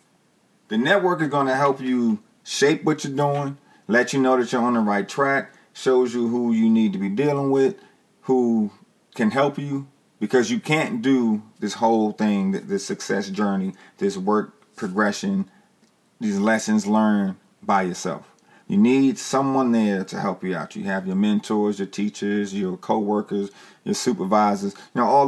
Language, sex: English, male